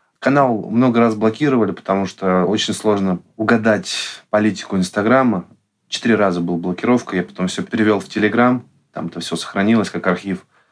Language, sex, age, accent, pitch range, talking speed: Russian, male, 20-39, native, 95-115 Hz, 150 wpm